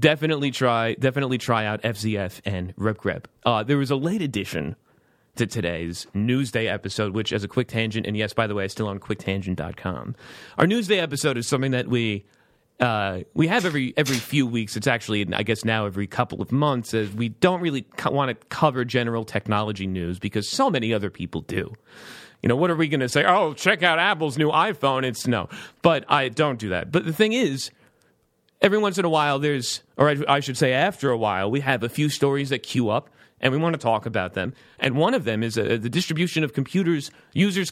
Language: English